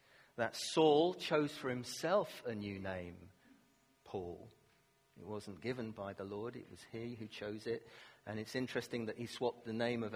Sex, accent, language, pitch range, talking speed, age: male, British, English, 105-135 Hz, 175 wpm, 40-59